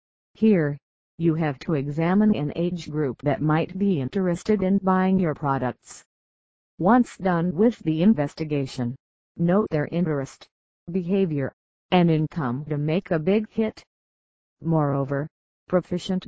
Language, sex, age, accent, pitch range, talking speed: English, female, 50-69, American, 150-190 Hz, 125 wpm